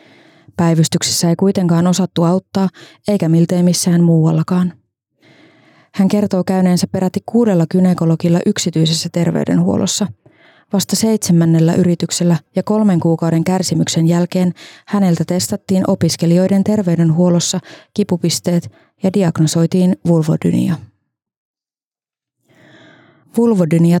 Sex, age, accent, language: female, 20-39, native, Finnish